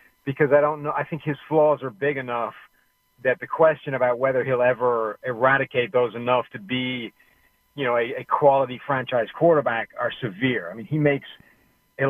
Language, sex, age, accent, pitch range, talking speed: English, male, 40-59, American, 120-145 Hz, 185 wpm